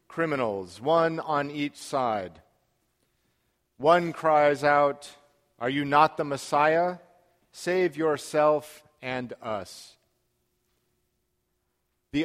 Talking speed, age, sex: 90 wpm, 40-59, male